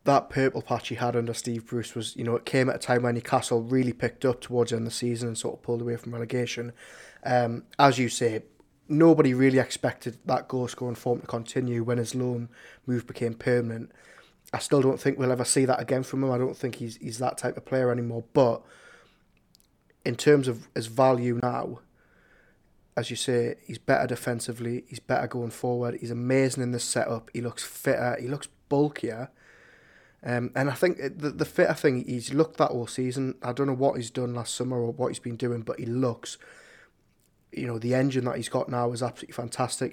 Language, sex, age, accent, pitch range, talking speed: English, male, 20-39, British, 120-130 Hz, 215 wpm